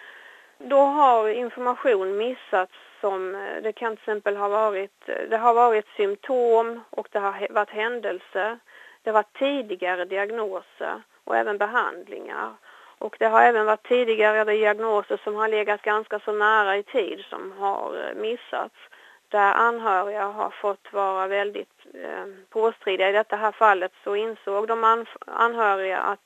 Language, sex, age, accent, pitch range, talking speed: Swedish, female, 30-49, native, 200-235 Hz, 140 wpm